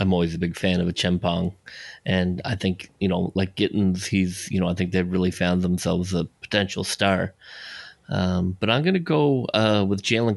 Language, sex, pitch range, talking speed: English, male, 90-100 Hz, 210 wpm